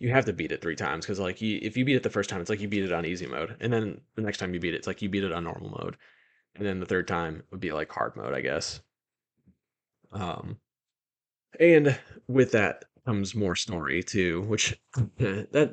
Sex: male